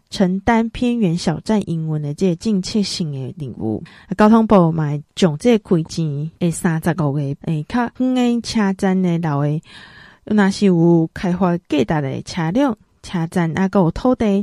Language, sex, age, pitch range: Chinese, female, 20-39, 165-220 Hz